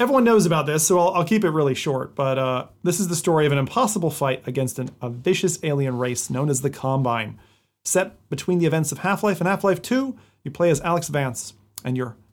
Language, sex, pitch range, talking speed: English, male, 125-165 Hz, 225 wpm